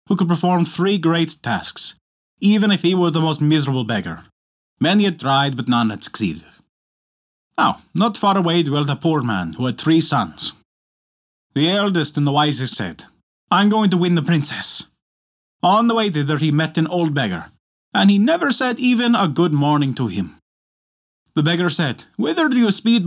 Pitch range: 130-195 Hz